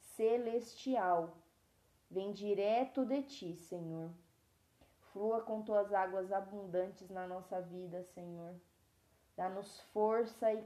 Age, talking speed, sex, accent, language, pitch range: 20-39, 100 wpm, female, Brazilian, Portuguese, 170-205 Hz